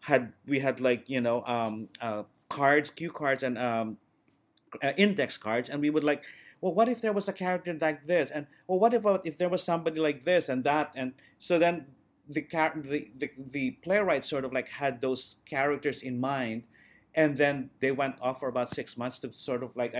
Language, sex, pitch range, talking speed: English, male, 120-155 Hz, 210 wpm